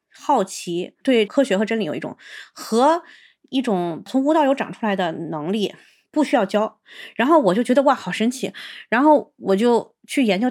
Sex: female